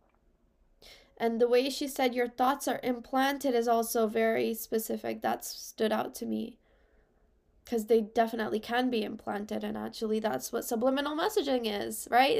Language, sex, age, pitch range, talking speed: English, female, 10-29, 220-290 Hz, 155 wpm